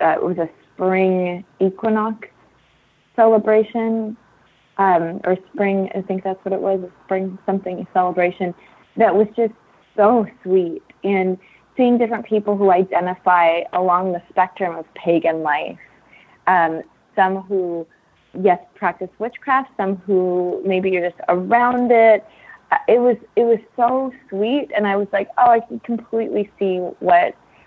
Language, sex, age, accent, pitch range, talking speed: English, female, 30-49, American, 180-215 Hz, 140 wpm